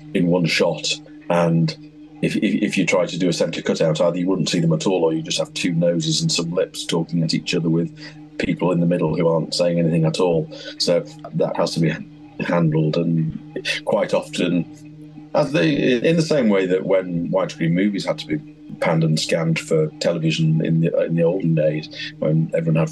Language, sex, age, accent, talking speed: English, male, 40-59, British, 210 wpm